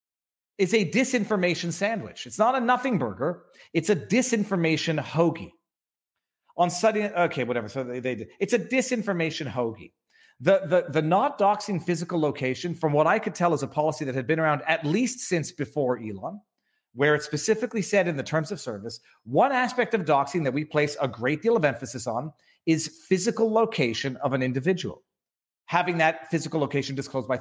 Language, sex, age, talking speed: English, male, 40-59, 180 wpm